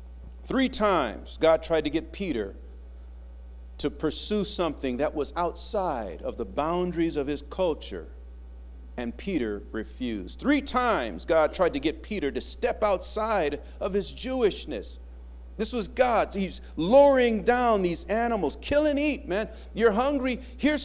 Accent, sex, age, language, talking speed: American, male, 40-59, English, 145 wpm